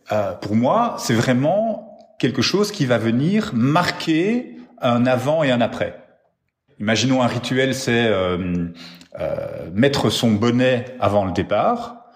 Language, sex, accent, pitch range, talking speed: French, male, French, 105-140 Hz, 140 wpm